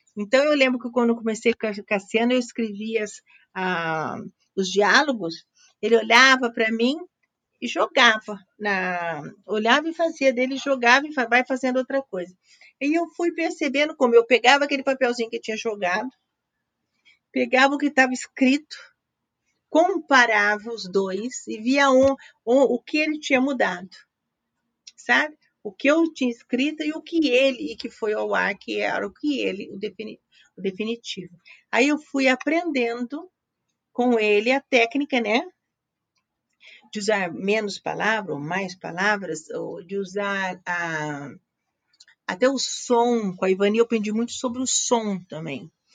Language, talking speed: Portuguese, 145 wpm